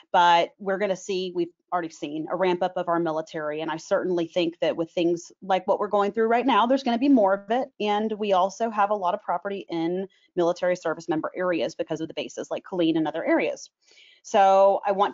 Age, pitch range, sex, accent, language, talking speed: 30-49, 175-230 Hz, female, American, English, 240 wpm